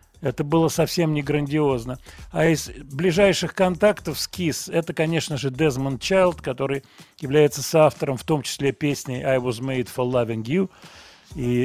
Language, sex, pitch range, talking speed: Russian, male, 125-170 Hz, 155 wpm